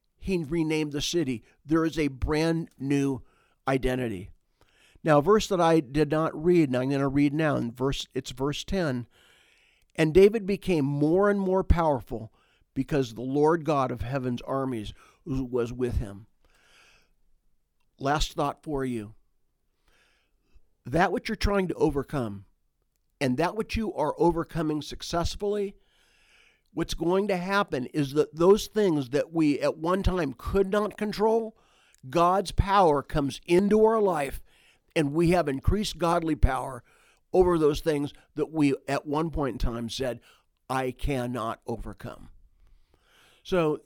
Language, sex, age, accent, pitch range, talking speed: English, male, 50-69, American, 120-165 Hz, 145 wpm